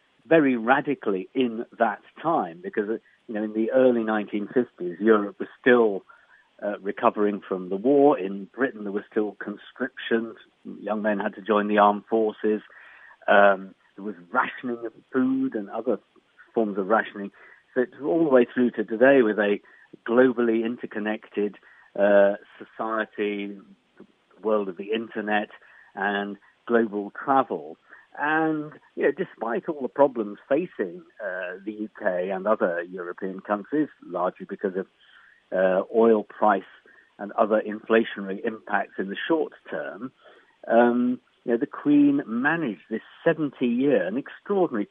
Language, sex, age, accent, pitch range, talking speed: English, male, 50-69, British, 105-130 Hz, 145 wpm